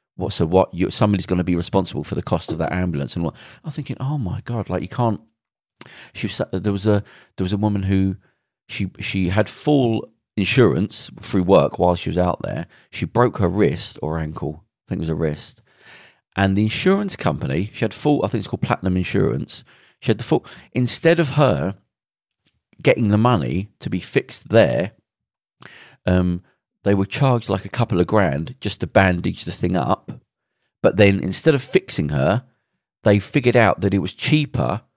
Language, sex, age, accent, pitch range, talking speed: English, male, 40-59, British, 95-120 Hz, 195 wpm